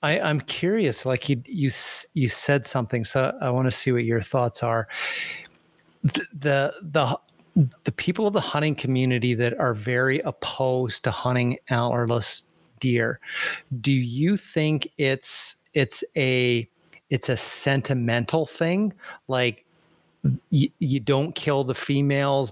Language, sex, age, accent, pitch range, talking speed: English, male, 30-49, American, 120-145 Hz, 140 wpm